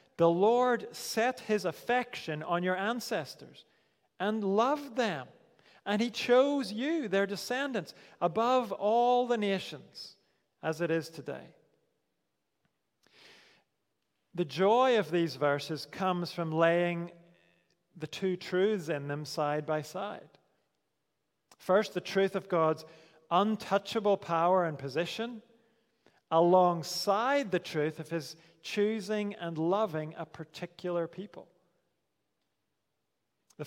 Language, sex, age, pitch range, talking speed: English, male, 40-59, 170-220 Hz, 110 wpm